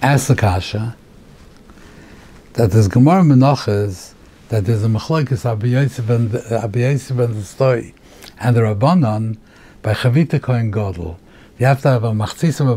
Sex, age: male, 60-79